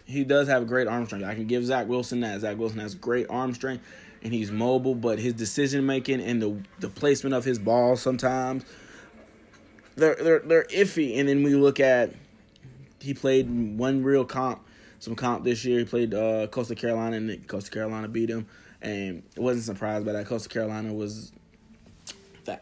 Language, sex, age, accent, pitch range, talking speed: English, male, 20-39, American, 110-130 Hz, 190 wpm